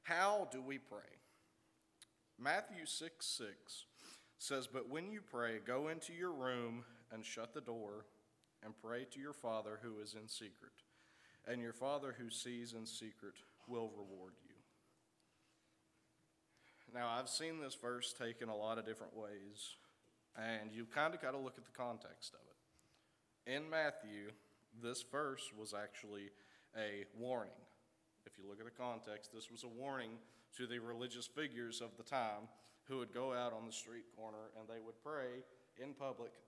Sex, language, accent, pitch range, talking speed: male, English, American, 110-125 Hz, 165 wpm